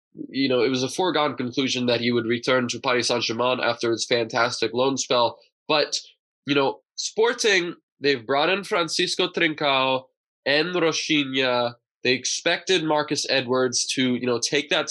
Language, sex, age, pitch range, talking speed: English, male, 20-39, 120-165 Hz, 155 wpm